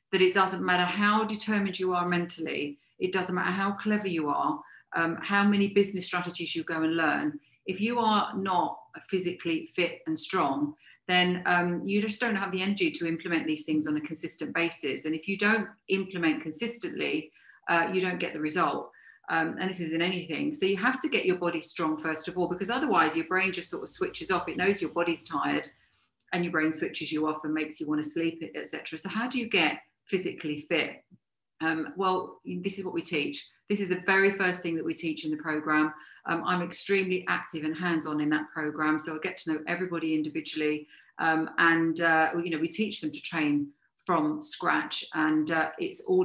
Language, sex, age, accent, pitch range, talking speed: English, female, 40-59, British, 155-195 Hz, 210 wpm